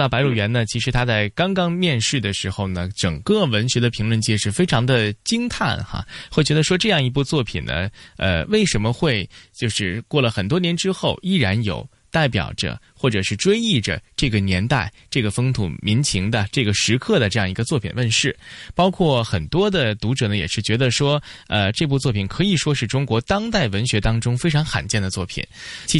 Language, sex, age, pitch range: Chinese, male, 20-39, 100-135 Hz